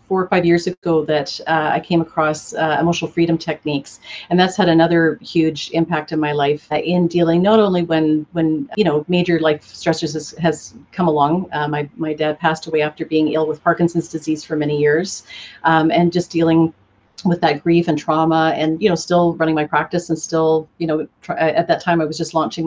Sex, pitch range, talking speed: female, 155-175 Hz, 215 wpm